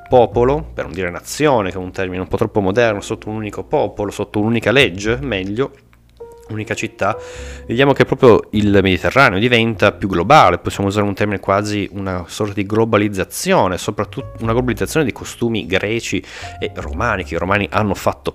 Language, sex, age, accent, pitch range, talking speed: Italian, male, 30-49, native, 90-115 Hz, 175 wpm